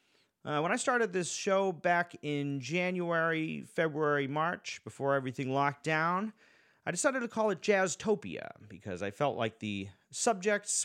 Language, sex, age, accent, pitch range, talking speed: English, male, 30-49, American, 120-165 Hz, 150 wpm